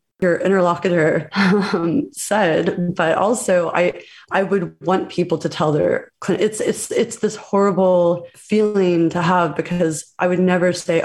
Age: 30-49